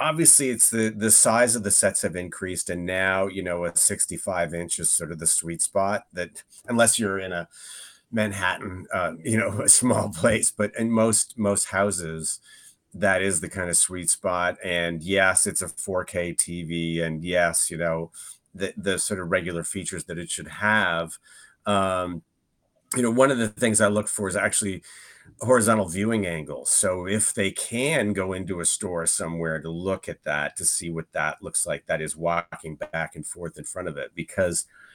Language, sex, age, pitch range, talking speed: English, male, 30-49, 85-110 Hz, 190 wpm